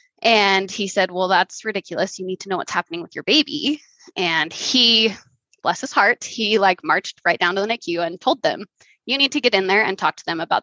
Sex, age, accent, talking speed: female, 20-39, American, 235 wpm